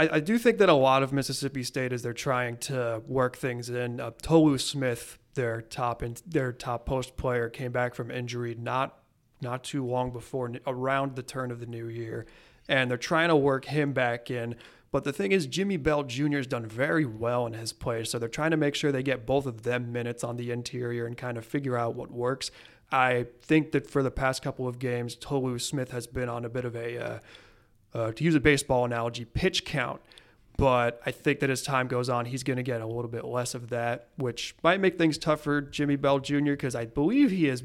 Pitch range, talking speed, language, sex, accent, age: 120-140 Hz, 230 wpm, English, male, American, 30-49